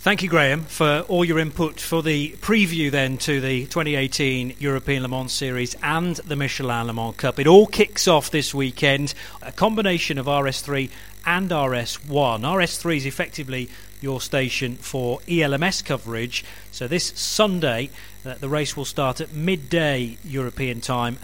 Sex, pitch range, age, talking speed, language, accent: male, 120-160 Hz, 40-59, 155 wpm, English, British